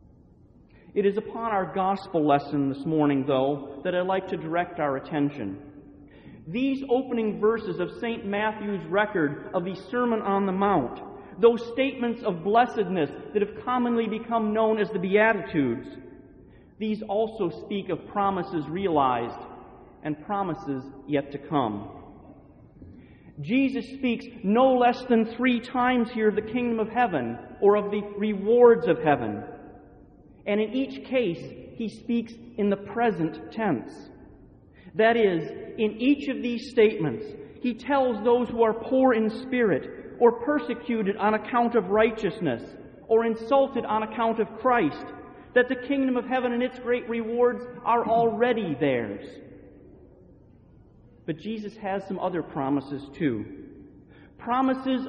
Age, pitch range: 40-59, 185-240 Hz